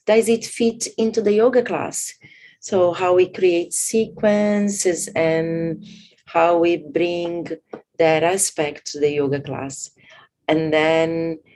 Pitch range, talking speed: 160-200 Hz, 125 wpm